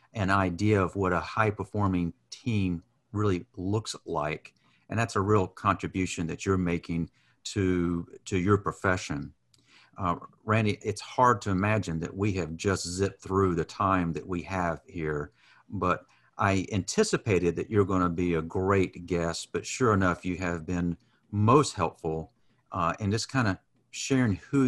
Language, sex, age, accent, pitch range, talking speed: English, male, 50-69, American, 90-110 Hz, 160 wpm